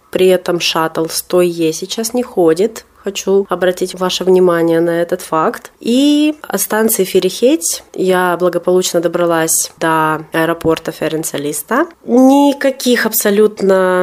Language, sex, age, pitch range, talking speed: Russian, female, 20-39, 165-210 Hz, 110 wpm